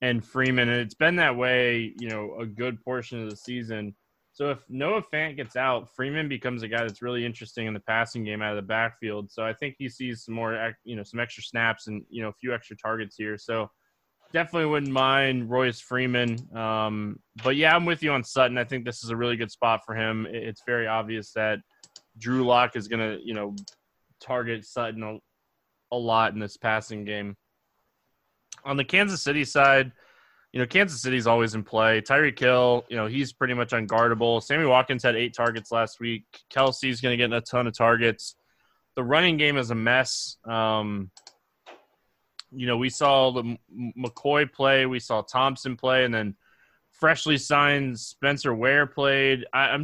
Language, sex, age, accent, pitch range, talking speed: English, male, 20-39, American, 110-130 Hz, 195 wpm